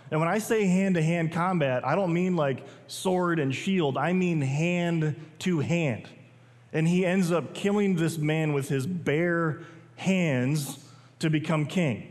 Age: 30-49